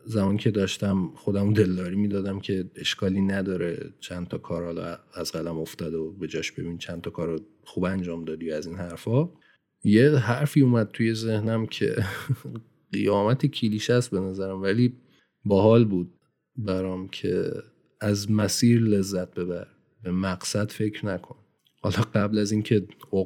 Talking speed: 150 wpm